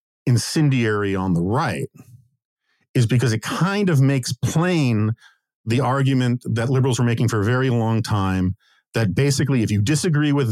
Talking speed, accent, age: 160 wpm, American, 50-69